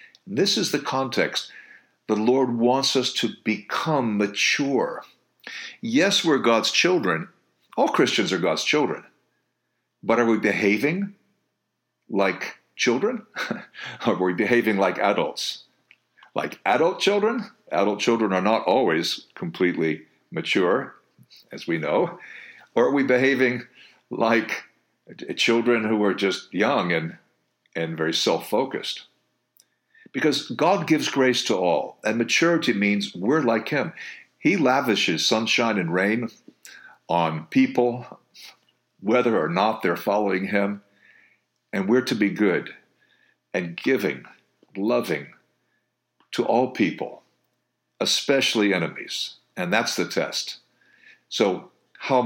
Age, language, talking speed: 50-69, English, 115 wpm